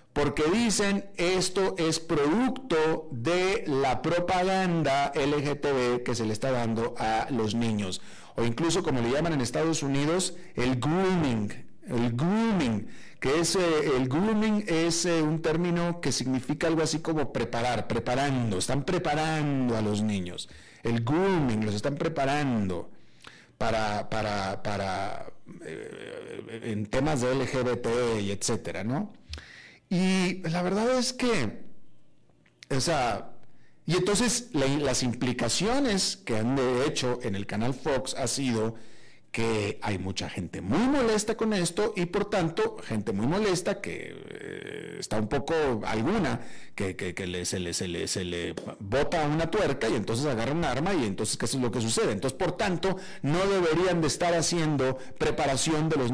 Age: 50-69